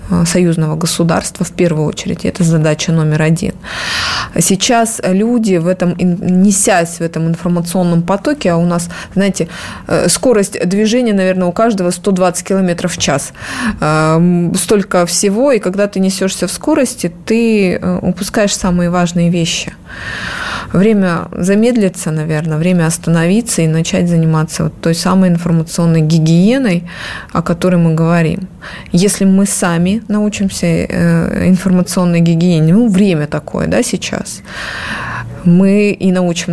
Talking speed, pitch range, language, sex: 120 wpm, 165-195 Hz, Russian, female